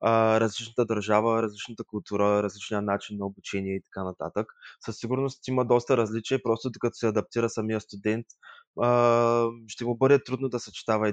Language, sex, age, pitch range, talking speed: Bulgarian, male, 20-39, 105-130 Hz, 155 wpm